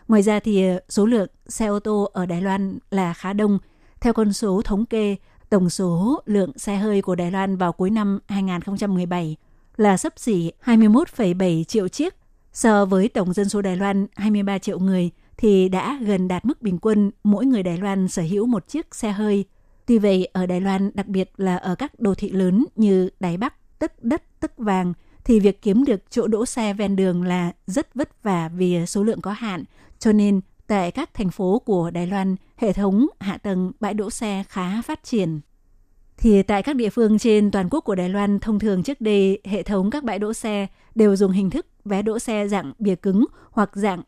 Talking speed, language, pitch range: 210 wpm, Vietnamese, 190-215 Hz